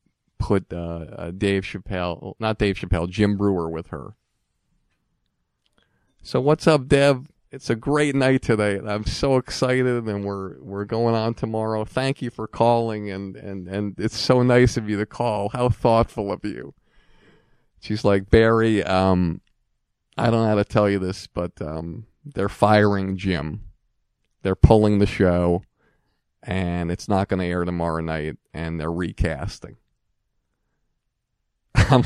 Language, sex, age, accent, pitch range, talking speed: English, male, 40-59, American, 90-115 Hz, 150 wpm